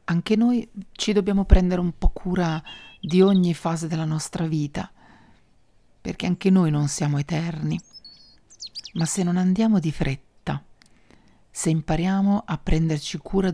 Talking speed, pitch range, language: 135 wpm, 150-180 Hz, Italian